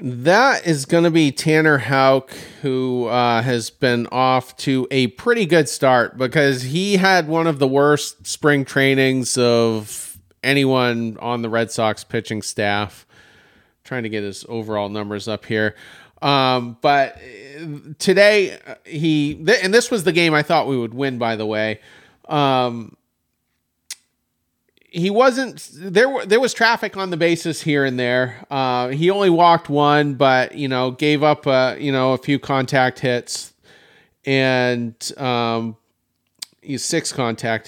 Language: English